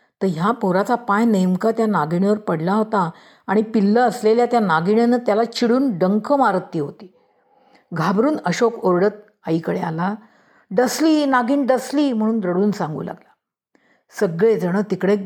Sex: female